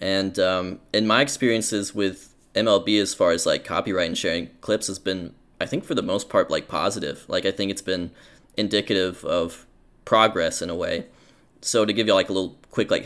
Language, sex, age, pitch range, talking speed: English, male, 20-39, 90-105 Hz, 205 wpm